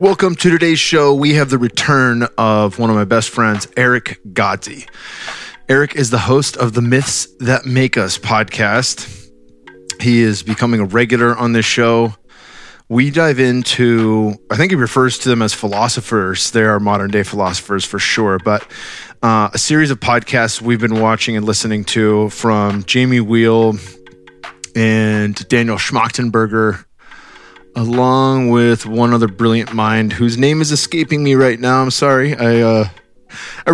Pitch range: 105-130 Hz